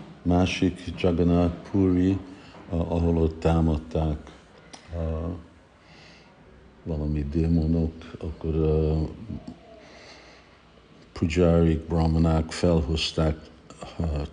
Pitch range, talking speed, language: 75-85 Hz, 60 wpm, Hungarian